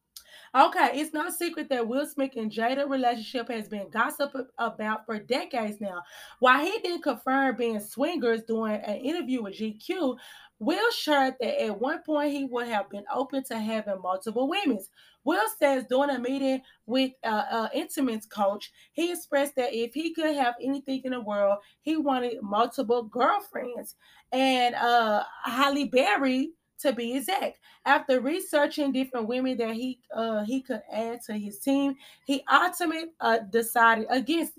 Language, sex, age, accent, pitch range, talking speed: English, female, 20-39, American, 220-280 Hz, 165 wpm